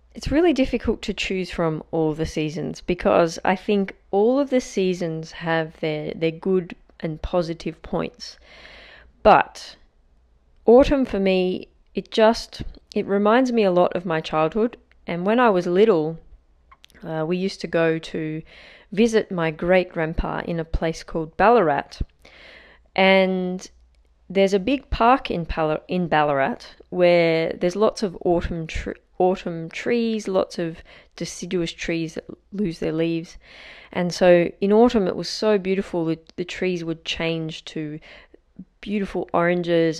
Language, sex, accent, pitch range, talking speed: English, female, Australian, 160-200 Hz, 145 wpm